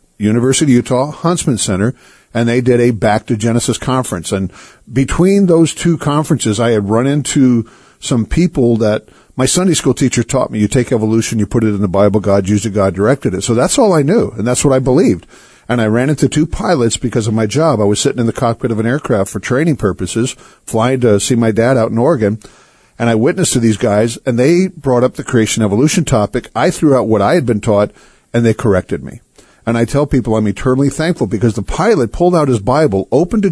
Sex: male